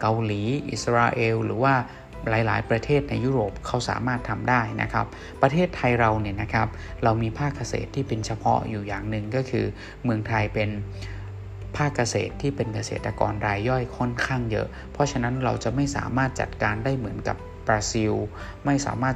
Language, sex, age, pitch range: Thai, male, 20-39, 105-125 Hz